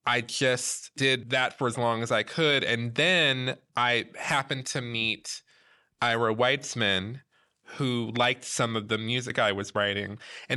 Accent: American